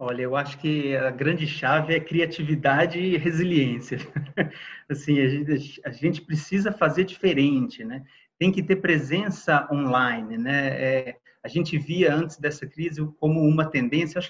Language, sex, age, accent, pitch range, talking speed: Portuguese, male, 30-49, Brazilian, 145-190 Hz, 155 wpm